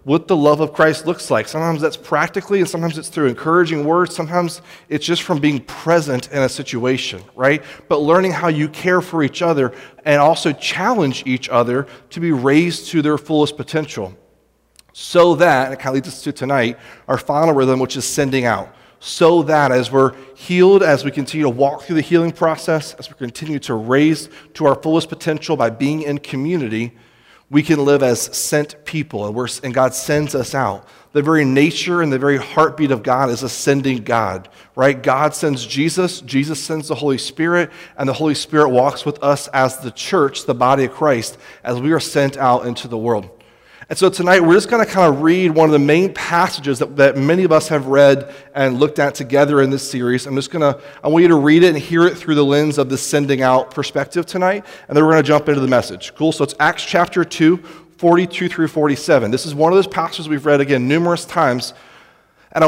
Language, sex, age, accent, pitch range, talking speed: English, male, 30-49, American, 135-170 Hz, 215 wpm